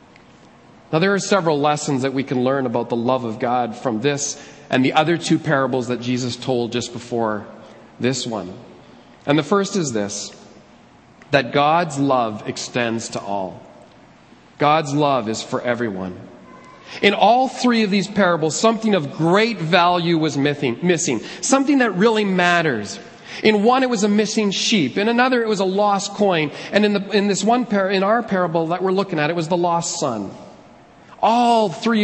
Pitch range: 145-210 Hz